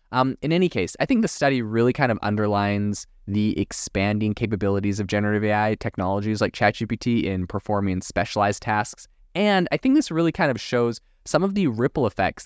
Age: 20-39